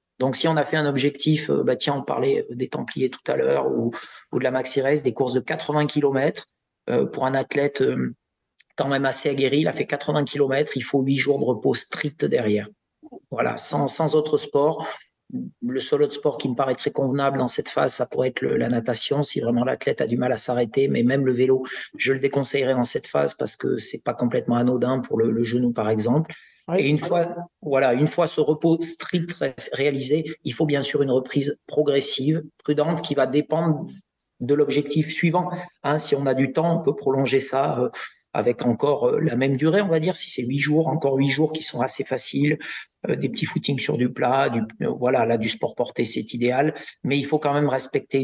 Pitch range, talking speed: 130-155 Hz, 220 wpm